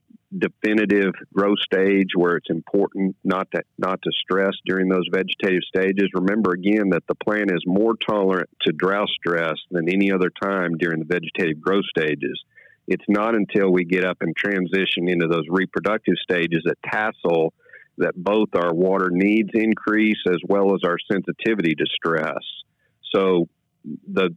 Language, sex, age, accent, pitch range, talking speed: English, male, 50-69, American, 90-105 Hz, 160 wpm